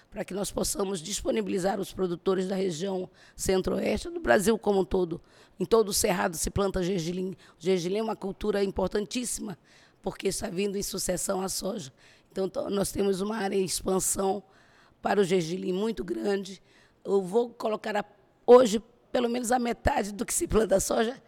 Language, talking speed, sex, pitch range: Portuguese, 175 wpm, female, 185-215 Hz